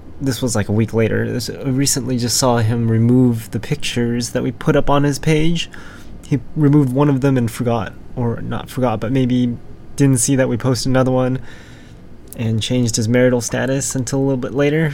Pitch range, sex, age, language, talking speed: 115-135 Hz, male, 20-39, English, 200 wpm